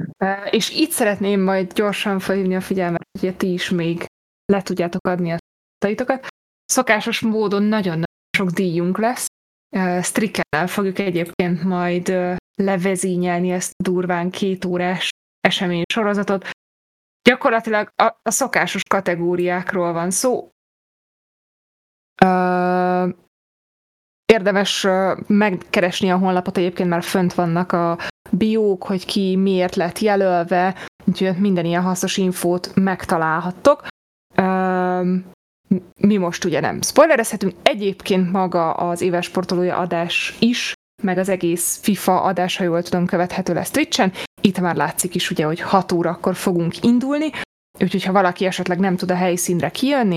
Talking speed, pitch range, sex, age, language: 125 wpm, 175-200 Hz, female, 20-39, Hungarian